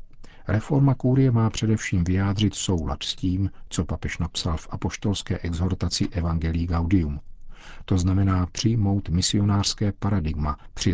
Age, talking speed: 50-69, 120 wpm